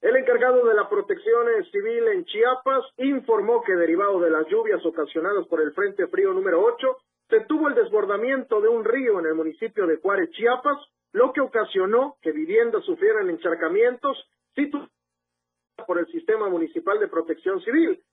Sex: male